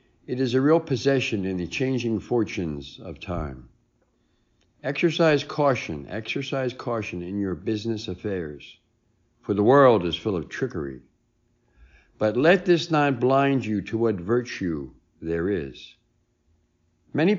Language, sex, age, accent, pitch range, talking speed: English, male, 60-79, American, 90-135 Hz, 130 wpm